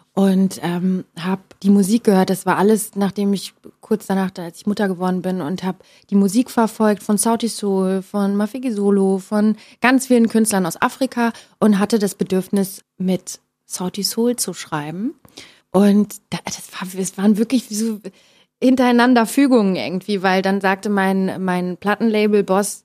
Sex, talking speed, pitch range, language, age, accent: female, 160 wpm, 185-230 Hz, German, 30-49, German